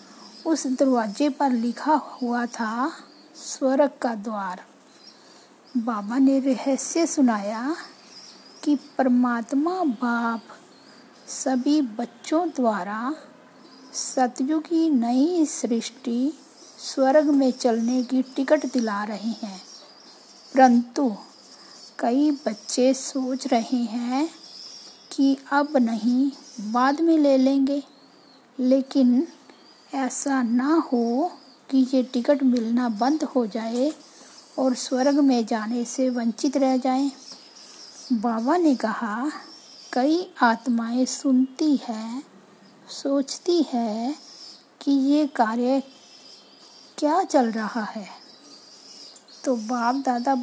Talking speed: 100 wpm